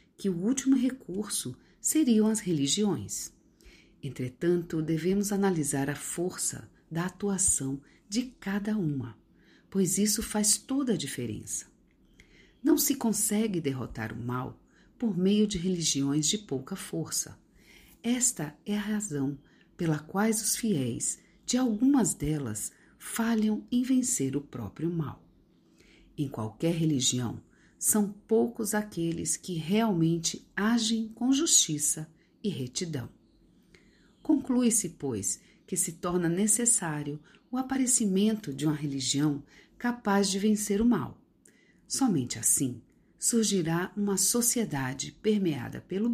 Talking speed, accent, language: 115 wpm, Brazilian, Portuguese